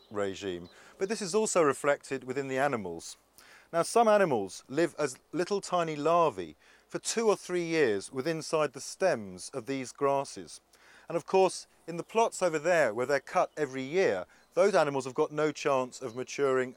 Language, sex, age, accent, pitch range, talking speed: English, male, 40-59, British, 125-170 Hz, 180 wpm